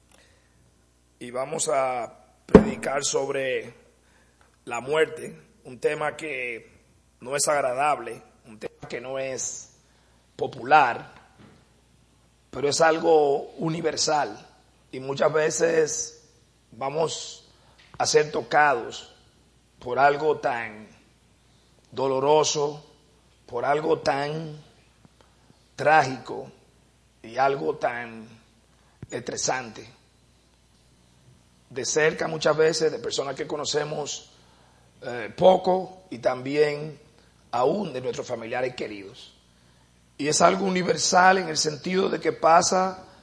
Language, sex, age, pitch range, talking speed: English, male, 40-59, 110-185 Hz, 95 wpm